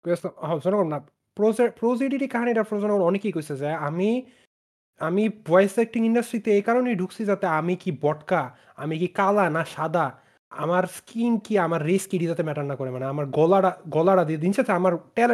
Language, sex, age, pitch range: Bengali, male, 30-49, 145-195 Hz